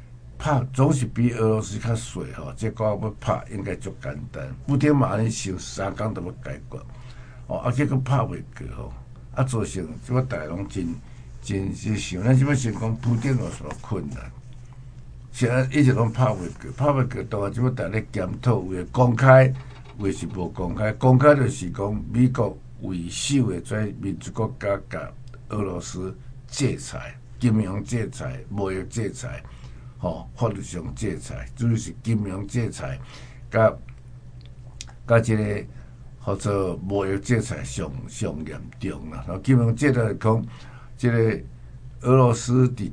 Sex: male